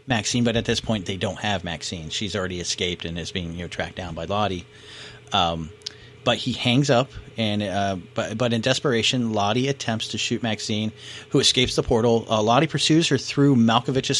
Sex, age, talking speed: male, 30-49, 200 wpm